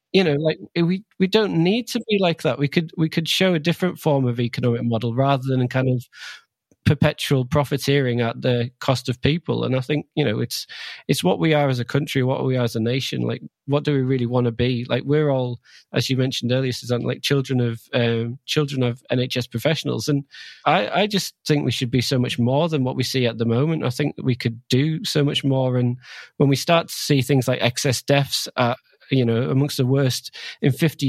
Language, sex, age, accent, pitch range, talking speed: English, male, 20-39, British, 125-145 Hz, 235 wpm